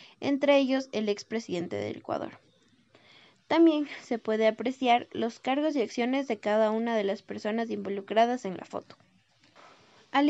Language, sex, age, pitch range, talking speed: Spanish, female, 20-39, 215-265 Hz, 145 wpm